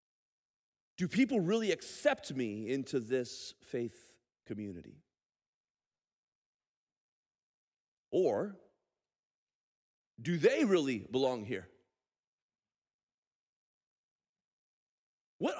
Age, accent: 40-59, American